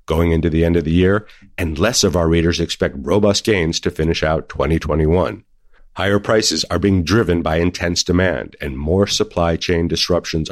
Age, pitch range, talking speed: 50-69, 85-100 Hz, 185 wpm